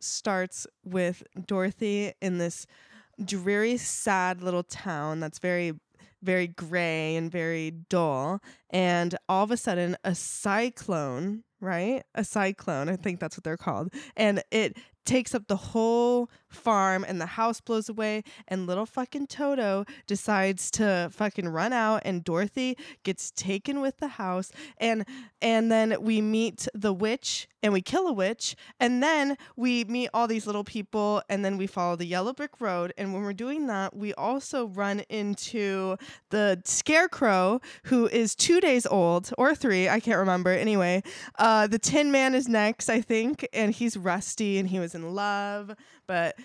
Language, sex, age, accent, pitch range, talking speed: English, female, 20-39, American, 185-230 Hz, 165 wpm